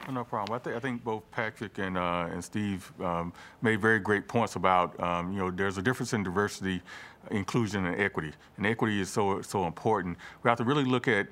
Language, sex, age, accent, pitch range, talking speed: English, male, 40-59, American, 95-110 Hz, 215 wpm